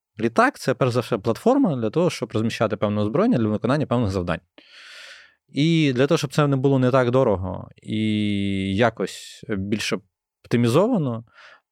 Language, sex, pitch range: Ukrainian, male, 100-130 Hz